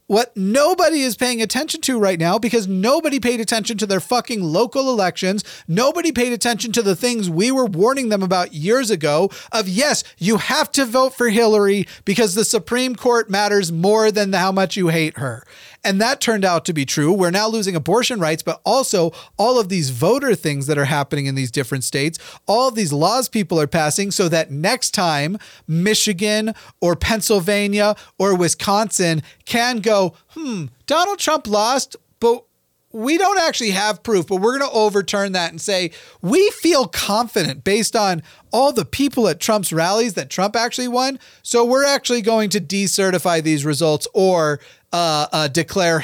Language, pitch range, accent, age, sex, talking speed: English, 175-240 Hz, American, 40-59, male, 180 wpm